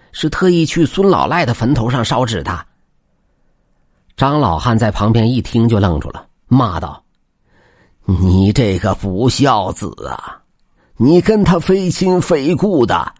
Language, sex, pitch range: Chinese, male, 90-140 Hz